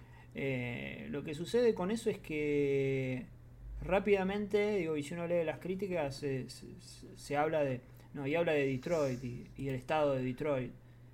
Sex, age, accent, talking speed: male, 30-49, Argentinian, 170 wpm